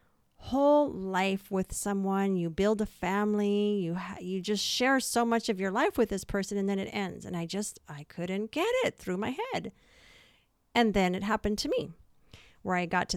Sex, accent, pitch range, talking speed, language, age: female, American, 165-205 Hz, 205 wpm, English, 40-59